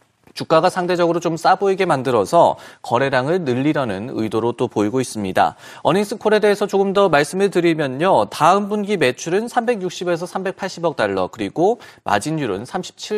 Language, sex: Korean, male